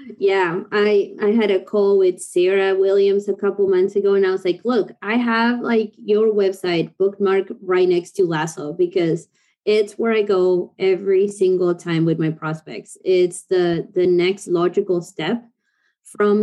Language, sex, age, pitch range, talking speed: English, female, 20-39, 175-210 Hz, 170 wpm